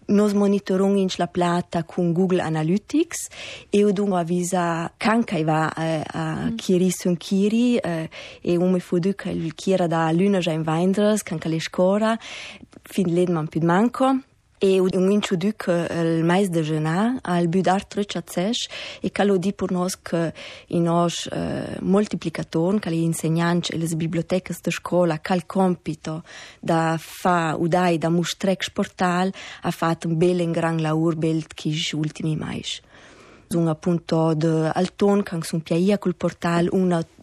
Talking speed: 110 wpm